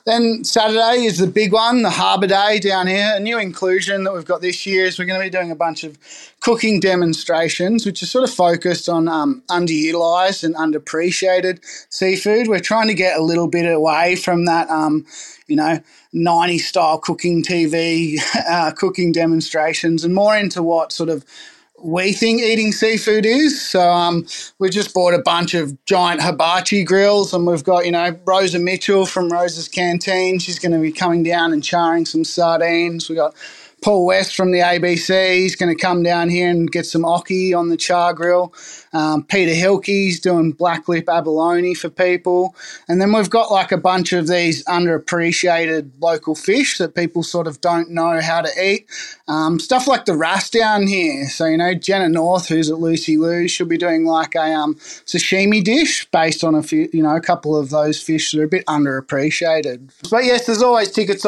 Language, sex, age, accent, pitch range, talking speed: English, male, 20-39, Australian, 165-190 Hz, 195 wpm